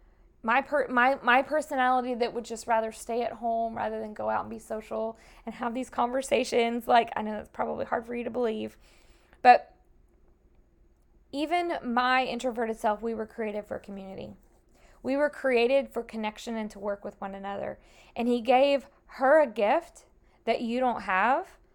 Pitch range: 205-245 Hz